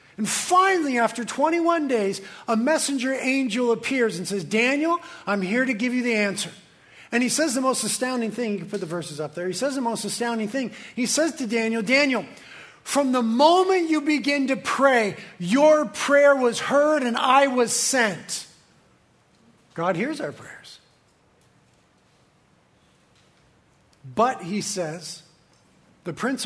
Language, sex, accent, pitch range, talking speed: English, male, American, 200-275 Hz, 155 wpm